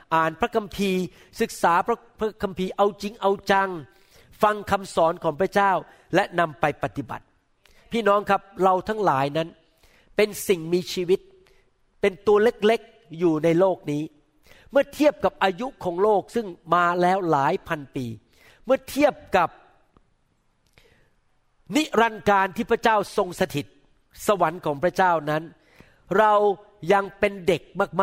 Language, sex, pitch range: Thai, male, 165-215 Hz